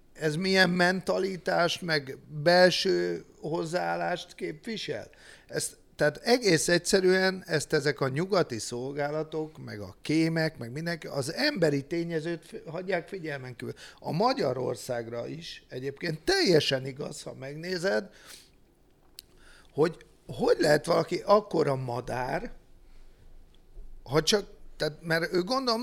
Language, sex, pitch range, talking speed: Hungarian, male, 135-185 Hz, 110 wpm